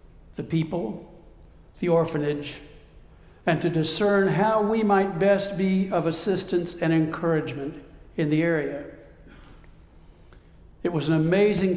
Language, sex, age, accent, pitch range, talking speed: English, male, 60-79, American, 140-185 Hz, 115 wpm